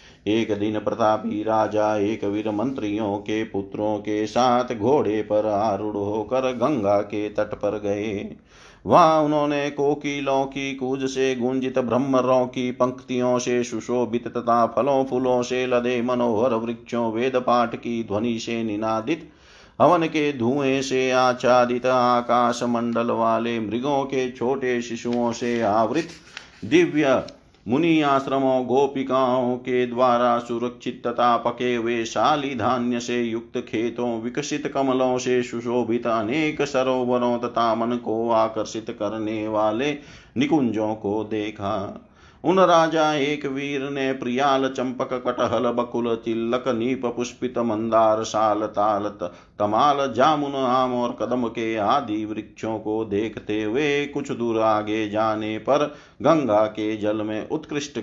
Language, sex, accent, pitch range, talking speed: Hindi, male, native, 110-130 Hz, 130 wpm